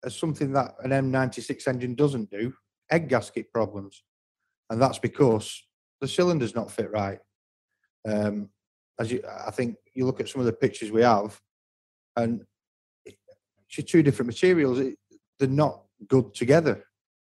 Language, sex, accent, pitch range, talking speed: English, male, British, 110-140 Hz, 150 wpm